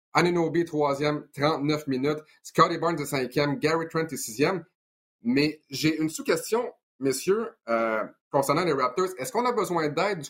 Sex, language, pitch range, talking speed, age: male, French, 135-165 Hz, 155 wpm, 30-49